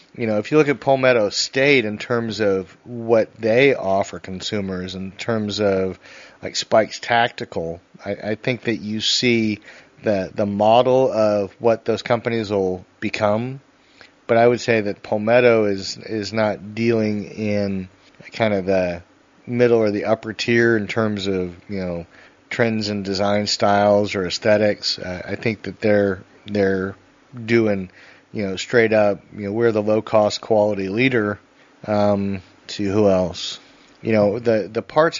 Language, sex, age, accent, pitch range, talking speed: English, male, 30-49, American, 100-115 Hz, 160 wpm